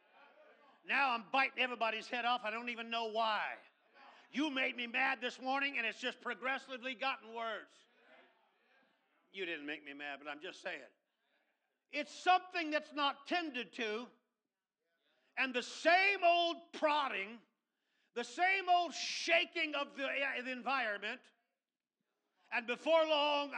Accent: American